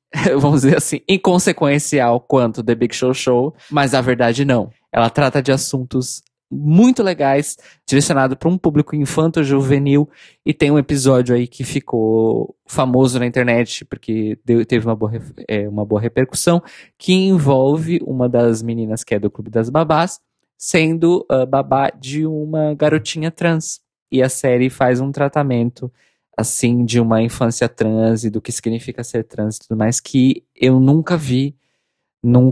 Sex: male